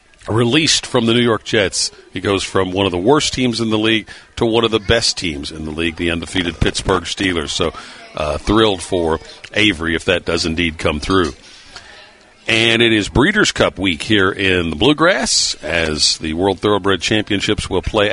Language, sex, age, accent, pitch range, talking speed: English, male, 50-69, American, 90-110 Hz, 190 wpm